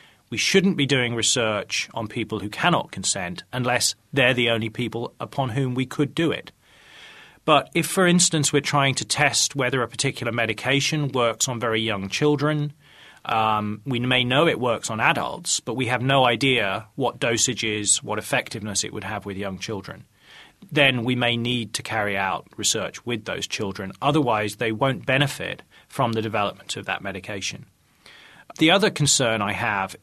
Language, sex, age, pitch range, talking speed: English, male, 30-49, 110-145 Hz, 175 wpm